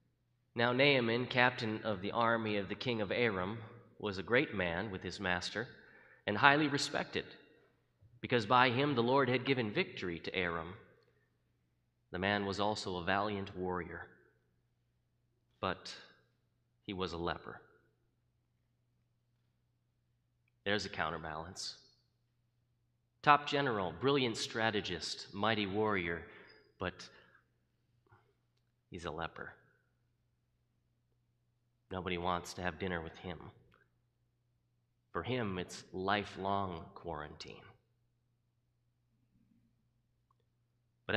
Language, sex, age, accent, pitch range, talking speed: English, male, 30-49, American, 100-120 Hz, 100 wpm